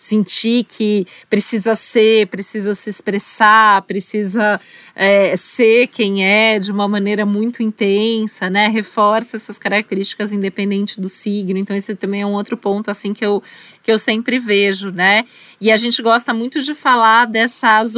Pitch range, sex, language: 200-230 Hz, female, Portuguese